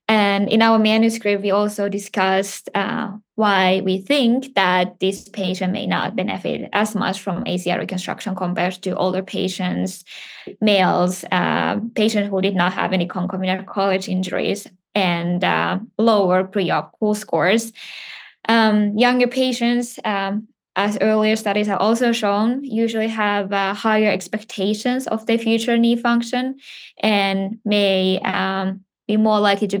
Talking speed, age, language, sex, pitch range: 140 wpm, 10-29, English, female, 195-220 Hz